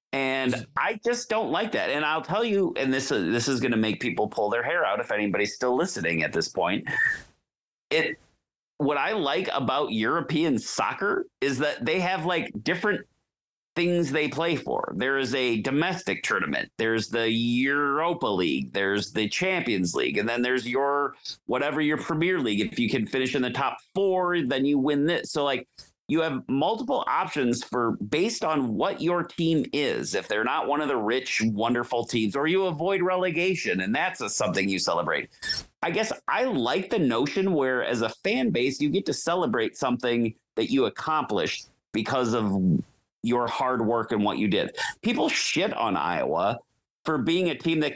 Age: 40-59